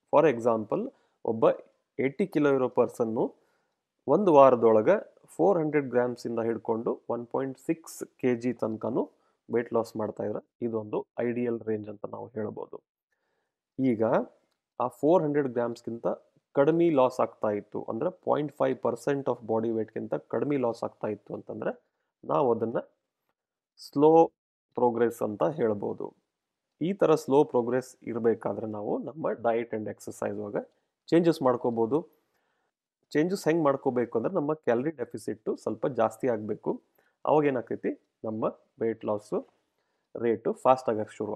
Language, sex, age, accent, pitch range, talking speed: Kannada, male, 30-49, native, 115-145 Hz, 125 wpm